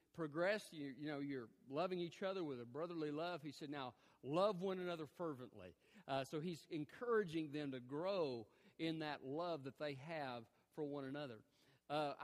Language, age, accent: English, 40-59, American